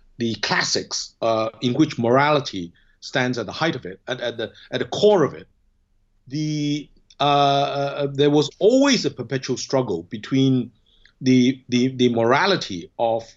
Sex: male